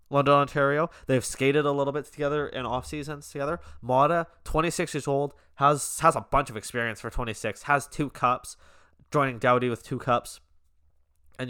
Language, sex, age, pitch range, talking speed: English, male, 20-39, 110-135 Hz, 170 wpm